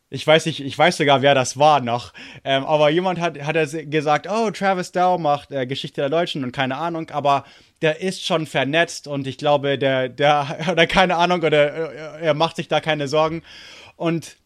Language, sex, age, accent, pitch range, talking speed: English, male, 30-49, German, 130-170 Hz, 205 wpm